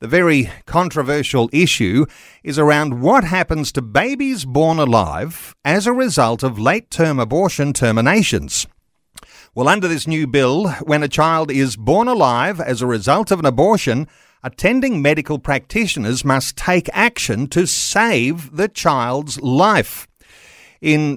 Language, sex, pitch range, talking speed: English, male, 125-170 Hz, 135 wpm